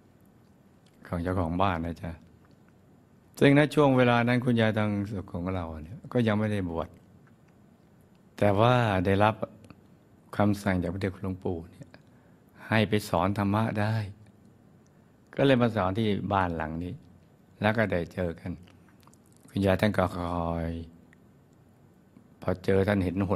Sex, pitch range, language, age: male, 90-105 Hz, Thai, 60-79